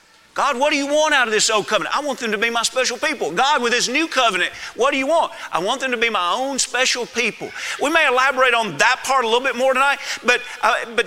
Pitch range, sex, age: 220-270 Hz, male, 40-59